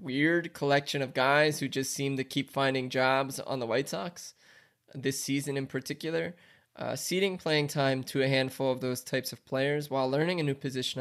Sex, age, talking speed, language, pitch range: male, 20-39, 195 wpm, English, 135-165 Hz